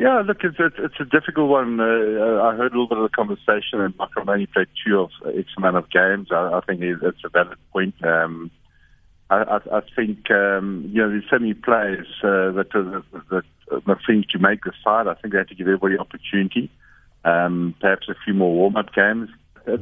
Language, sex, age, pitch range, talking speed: English, male, 50-69, 90-110 Hz, 215 wpm